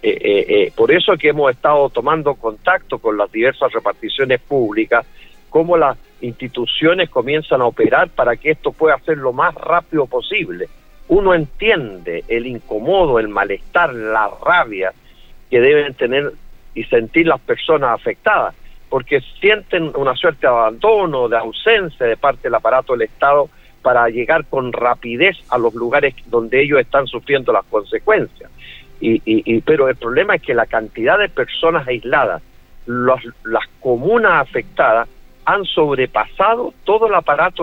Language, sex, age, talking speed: Spanish, male, 60-79, 150 wpm